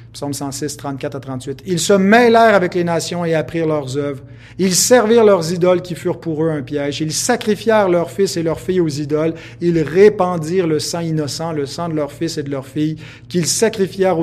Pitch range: 140-170 Hz